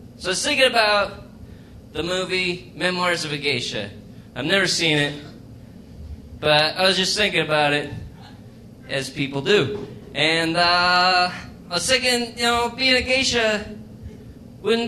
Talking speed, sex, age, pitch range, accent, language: 145 wpm, male, 20-39, 145-205 Hz, American, English